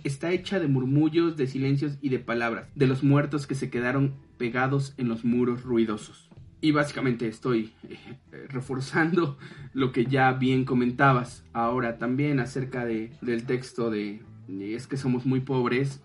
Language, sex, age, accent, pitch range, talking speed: Spanish, male, 30-49, Mexican, 115-135 Hz, 155 wpm